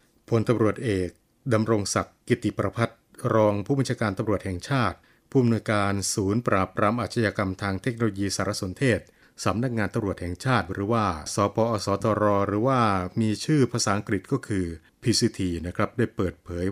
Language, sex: Thai, male